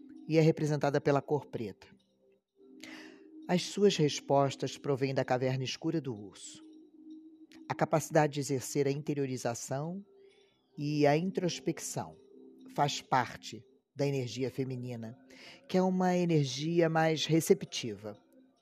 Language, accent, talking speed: Portuguese, Brazilian, 115 wpm